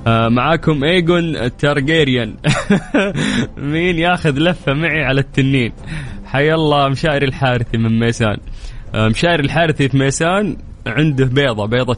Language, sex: English, male